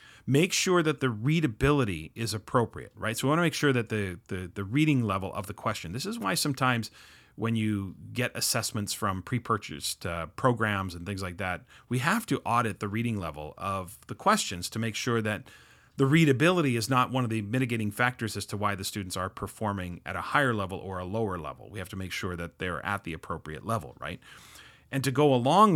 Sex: male